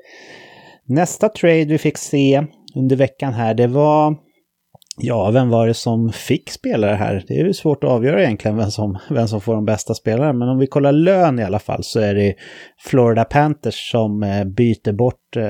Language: English